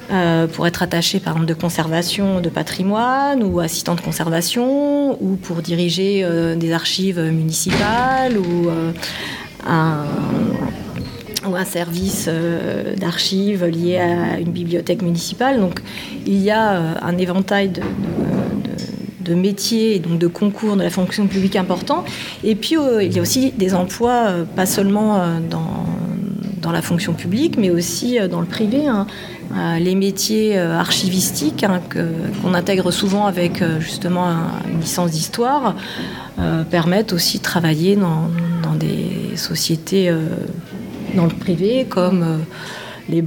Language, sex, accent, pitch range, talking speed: English, female, French, 170-205 Hz, 145 wpm